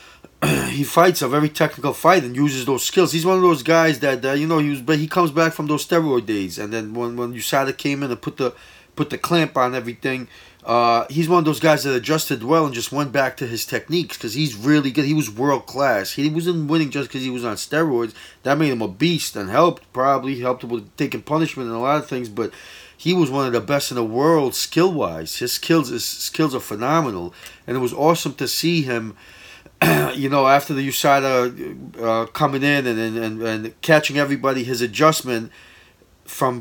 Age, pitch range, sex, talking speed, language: 20-39, 120-155 Hz, male, 220 wpm, English